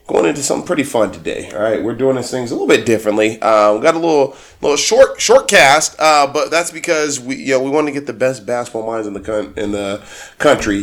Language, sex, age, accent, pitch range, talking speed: English, male, 20-39, American, 105-140 Hz, 260 wpm